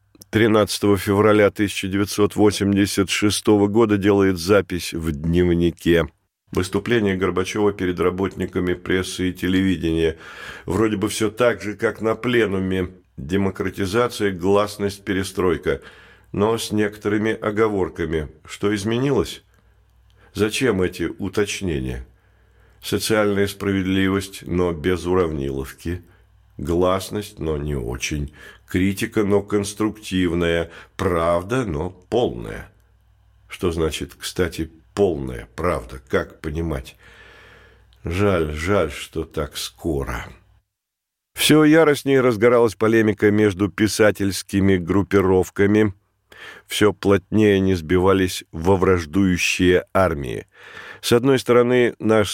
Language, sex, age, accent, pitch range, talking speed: Russian, male, 50-69, native, 90-105 Hz, 90 wpm